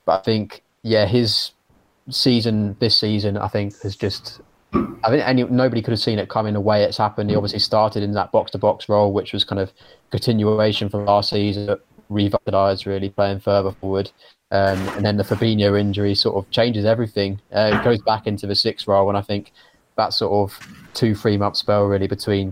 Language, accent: English, British